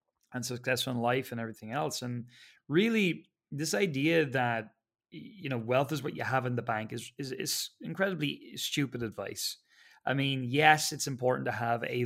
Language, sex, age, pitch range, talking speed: English, male, 20-39, 115-145 Hz, 180 wpm